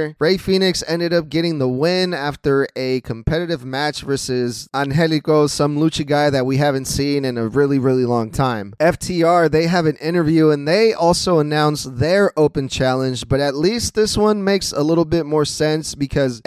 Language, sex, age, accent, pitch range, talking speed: English, male, 20-39, American, 130-160 Hz, 180 wpm